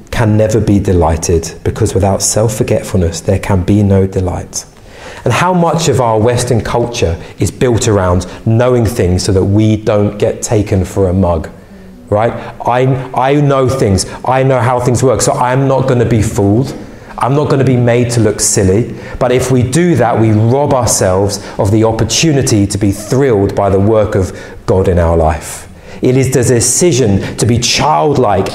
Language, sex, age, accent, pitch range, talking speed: English, male, 40-59, British, 100-155 Hz, 190 wpm